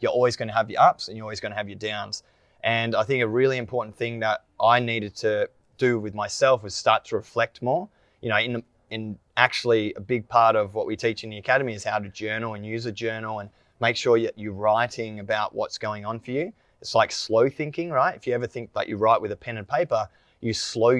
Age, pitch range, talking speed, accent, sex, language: 20-39, 105-120 Hz, 245 wpm, Australian, male, English